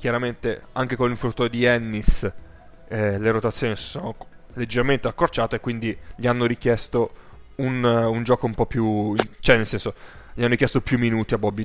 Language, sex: Italian, male